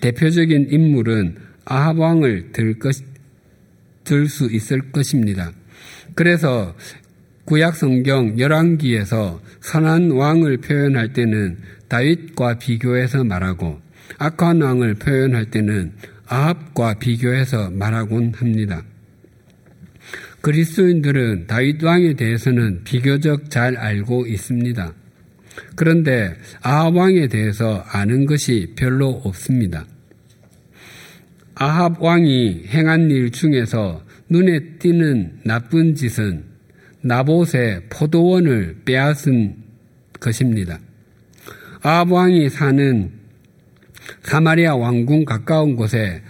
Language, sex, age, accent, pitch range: Korean, male, 50-69, native, 110-155 Hz